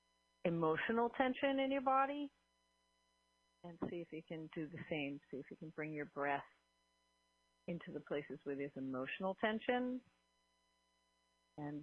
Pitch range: 155-170 Hz